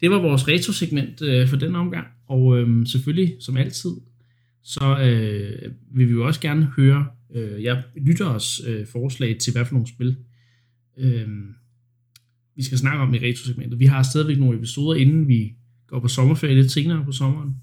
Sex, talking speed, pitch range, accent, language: male, 180 wpm, 120-140 Hz, native, Danish